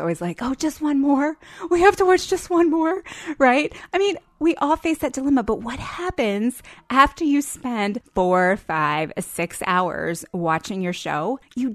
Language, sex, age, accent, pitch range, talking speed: English, female, 20-39, American, 180-275 Hz, 180 wpm